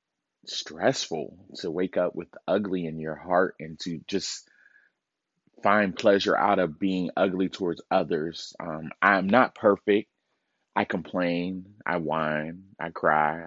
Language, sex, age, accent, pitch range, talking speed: English, male, 30-49, American, 85-100 Hz, 145 wpm